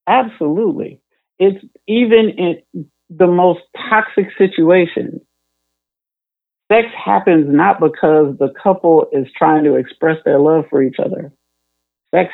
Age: 50-69